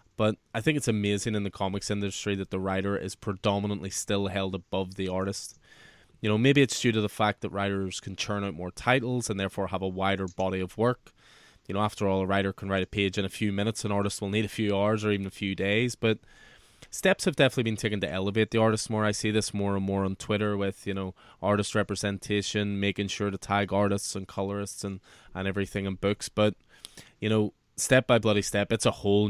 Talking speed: 235 wpm